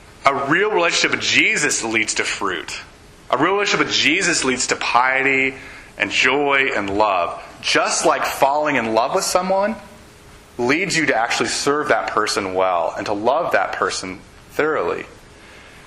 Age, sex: 30-49, male